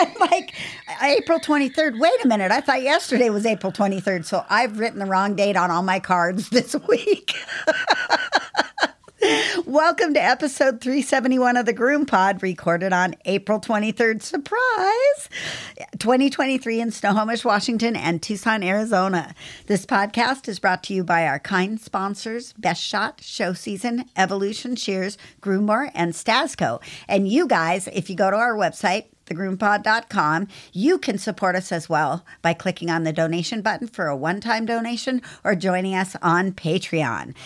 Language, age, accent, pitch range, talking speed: English, 50-69, American, 190-260 Hz, 165 wpm